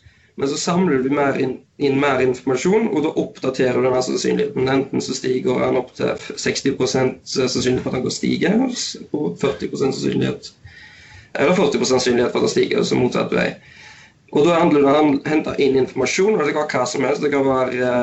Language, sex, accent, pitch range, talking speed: English, male, Swedish, 125-145 Hz, 180 wpm